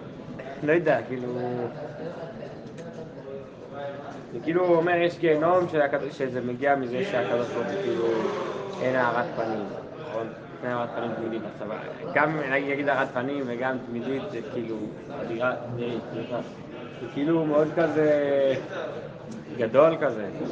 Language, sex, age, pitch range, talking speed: English, male, 20-39, 140-190 Hz, 65 wpm